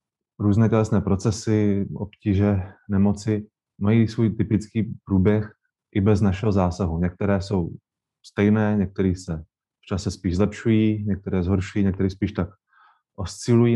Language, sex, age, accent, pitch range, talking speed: Czech, male, 20-39, native, 95-105 Hz, 120 wpm